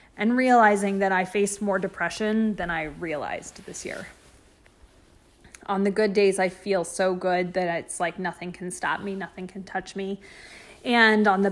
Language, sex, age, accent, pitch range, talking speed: English, female, 20-39, American, 175-210 Hz, 175 wpm